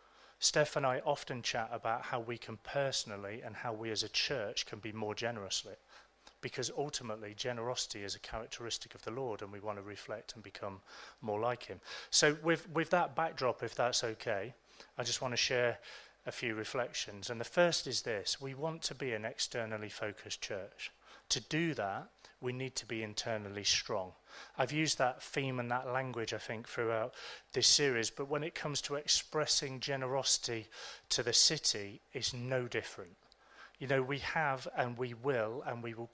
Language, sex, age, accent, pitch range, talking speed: English, male, 30-49, British, 110-140 Hz, 185 wpm